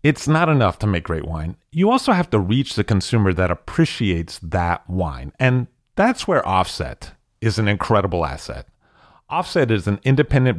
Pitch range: 95-130 Hz